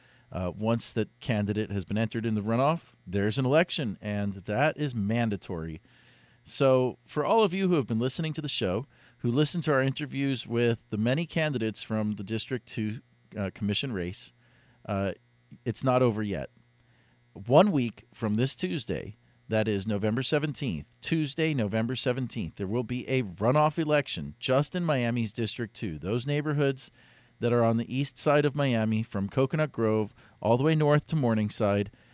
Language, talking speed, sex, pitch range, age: English, 170 wpm, male, 105-130 Hz, 40-59